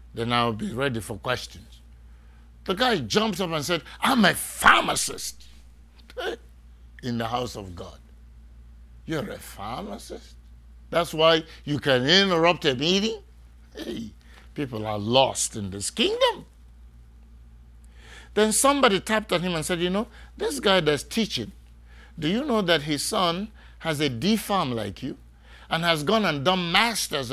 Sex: male